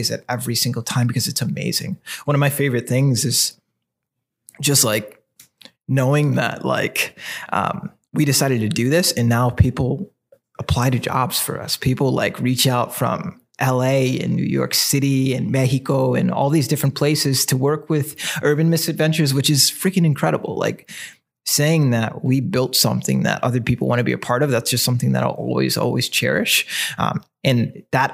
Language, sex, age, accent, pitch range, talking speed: English, male, 20-39, American, 120-140 Hz, 180 wpm